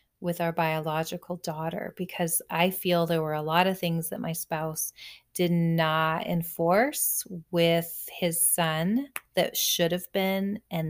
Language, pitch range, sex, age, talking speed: English, 165-195 Hz, female, 30-49, 150 wpm